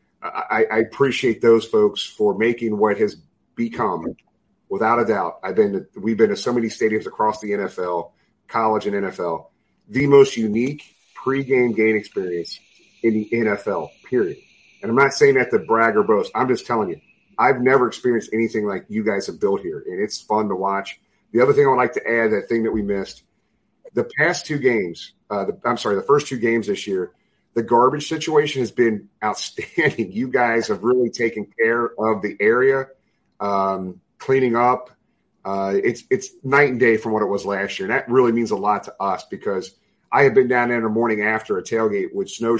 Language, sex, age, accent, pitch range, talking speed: English, male, 40-59, American, 110-140 Hz, 200 wpm